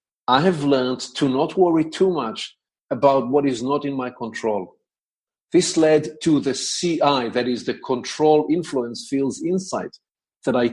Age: 50-69